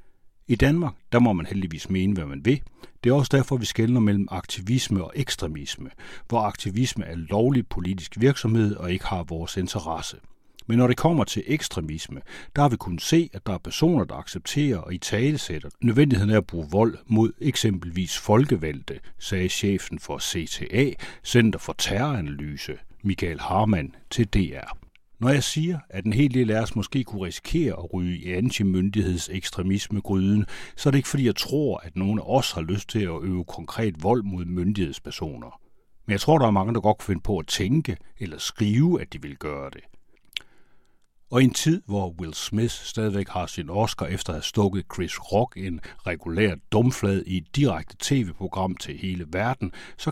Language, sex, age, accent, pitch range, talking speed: Danish, male, 60-79, native, 90-120 Hz, 185 wpm